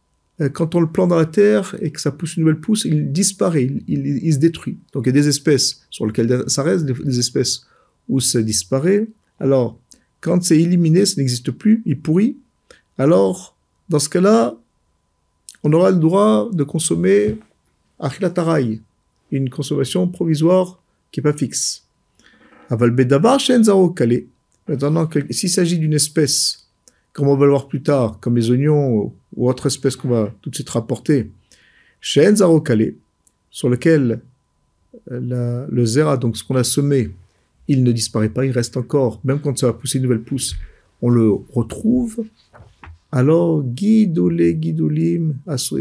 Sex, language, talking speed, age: male, French, 160 wpm, 50-69